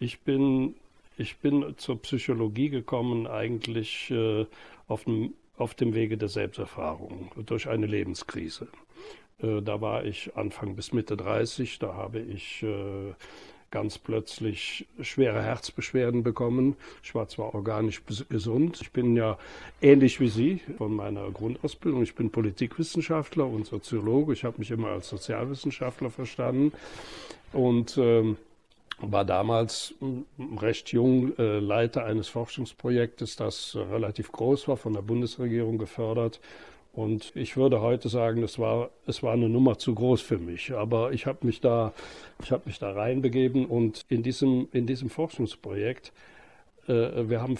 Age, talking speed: 60-79, 135 wpm